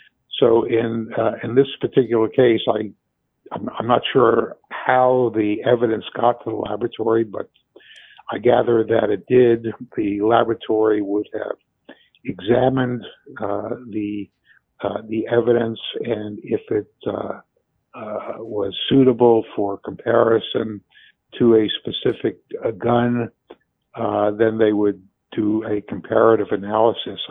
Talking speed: 125 wpm